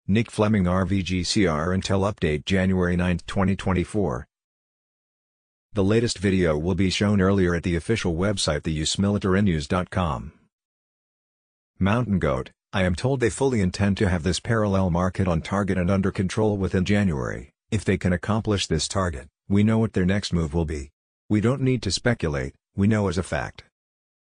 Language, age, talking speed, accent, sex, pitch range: English, 50-69, 160 wpm, American, male, 90-105 Hz